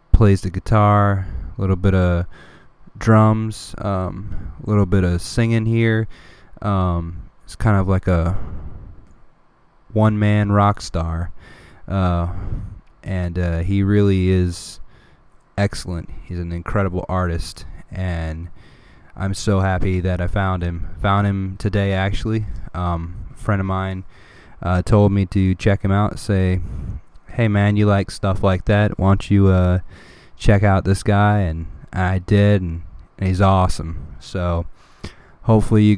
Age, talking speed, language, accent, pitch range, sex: 20-39, 140 wpm, English, American, 90-105 Hz, male